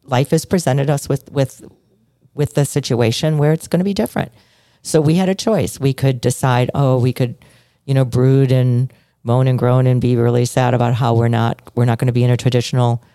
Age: 40-59